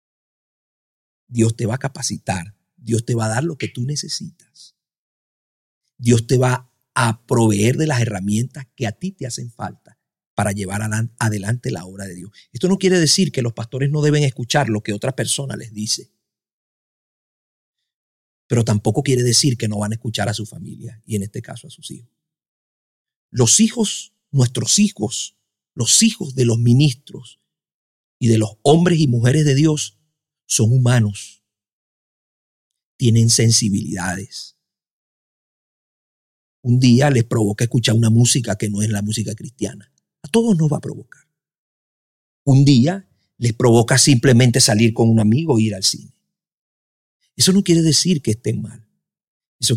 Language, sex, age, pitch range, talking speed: Spanish, male, 50-69, 110-145 Hz, 160 wpm